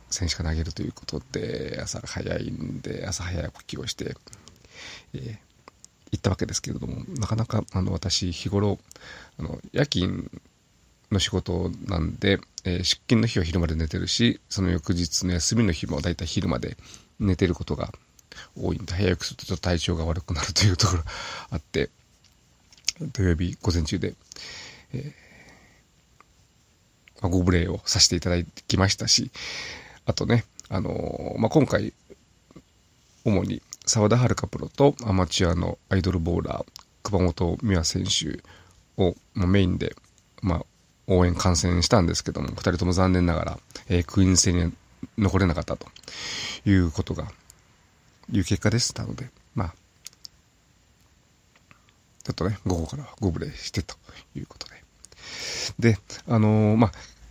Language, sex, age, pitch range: Japanese, male, 40-59, 90-105 Hz